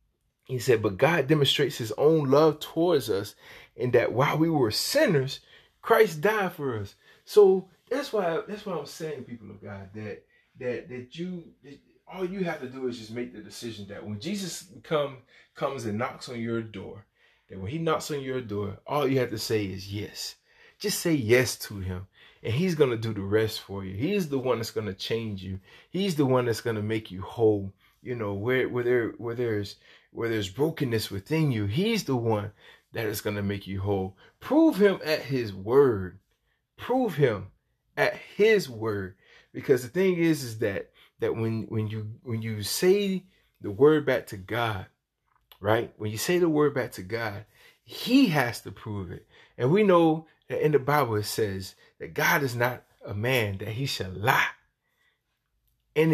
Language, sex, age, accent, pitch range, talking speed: English, male, 30-49, American, 105-160 Hz, 190 wpm